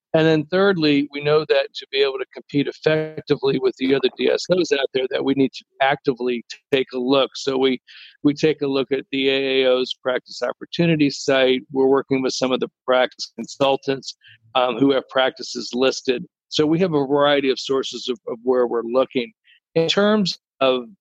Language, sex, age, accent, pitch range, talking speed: English, male, 50-69, American, 130-155 Hz, 190 wpm